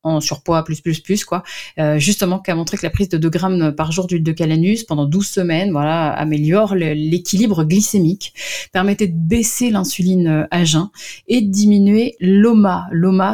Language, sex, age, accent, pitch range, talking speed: French, female, 30-49, French, 155-190 Hz, 180 wpm